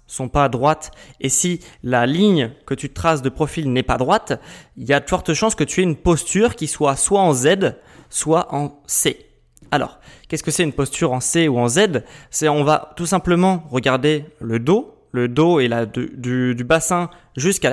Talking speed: 210 wpm